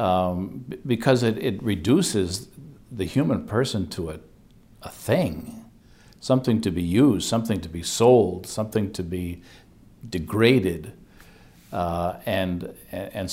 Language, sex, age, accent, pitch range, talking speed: English, male, 60-79, American, 90-110 Hz, 120 wpm